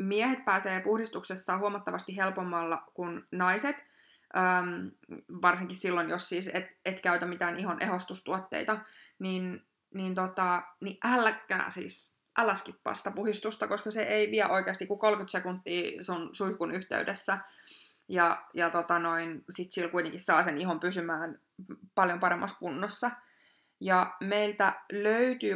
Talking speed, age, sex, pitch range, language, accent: 125 wpm, 20-39, female, 175-195 Hz, Finnish, native